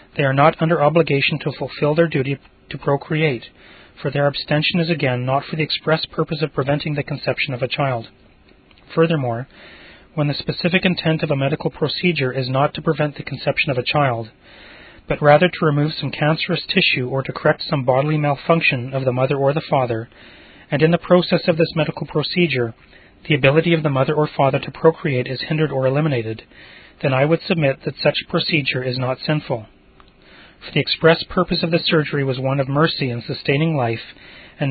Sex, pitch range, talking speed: male, 130-160 Hz, 190 wpm